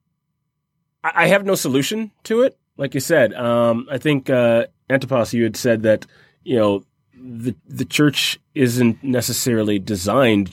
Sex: male